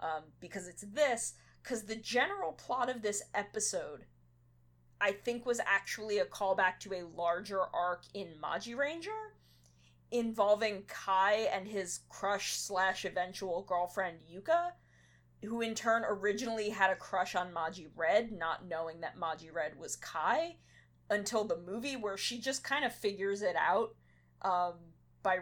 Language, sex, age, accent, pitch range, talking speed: English, female, 20-39, American, 165-220 Hz, 150 wpm